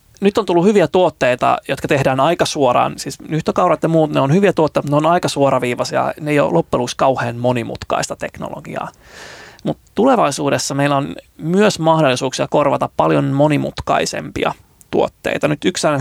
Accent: native